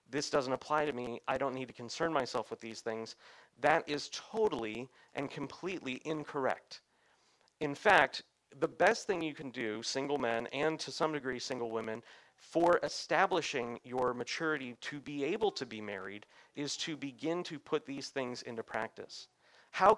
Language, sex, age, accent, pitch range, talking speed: English, male, 40-59, American, 125-155 Hz, 170 wpm